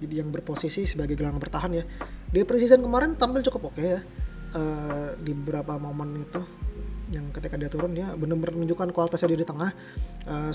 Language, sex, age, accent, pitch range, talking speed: Indonesian, male, 20-39, native, 150-175 Hz, 180 wpm